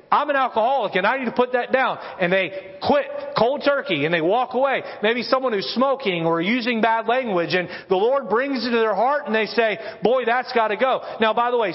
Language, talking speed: English, 240 wpm